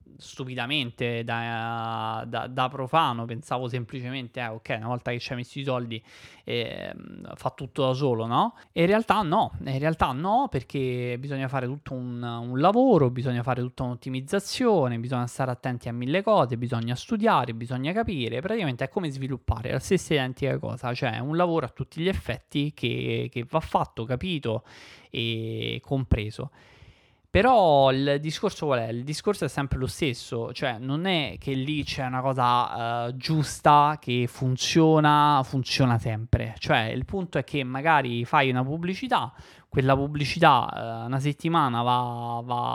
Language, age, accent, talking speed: Italian, 20-39, native, 160 wpm